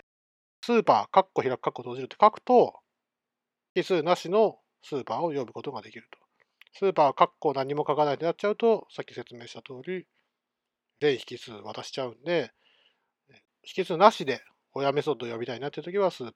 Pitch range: 130-195 Hz